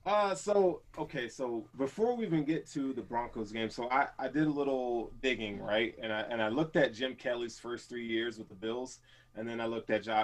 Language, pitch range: English, 115-145 Hz